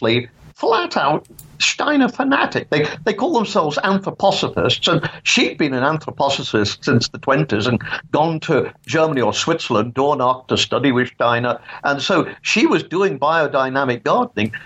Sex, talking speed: male, 140 wpm